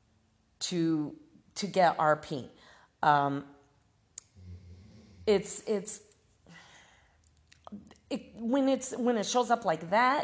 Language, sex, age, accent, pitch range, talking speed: English, female, 40-59, American, 140-200 Hz, 95 wpm